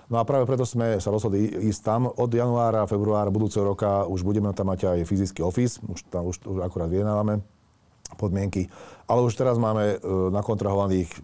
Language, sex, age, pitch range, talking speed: Slovak, male, 40-59, 95-115 Hz, 180 wpm